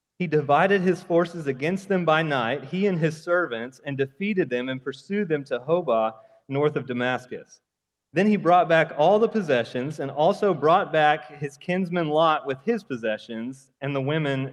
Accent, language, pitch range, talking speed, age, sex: American, English, 130-175 Hz, 180 wpm, 30-49, male